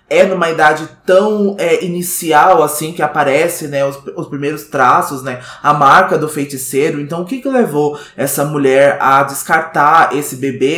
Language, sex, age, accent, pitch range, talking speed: Portuguese, male, 20-39, Brazilian, 145-190 Hz, 165 wpm